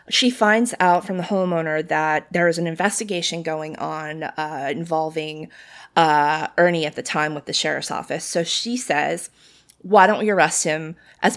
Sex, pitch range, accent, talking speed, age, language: female, 155-190 Hz, American, 175 wpm, 20-39, English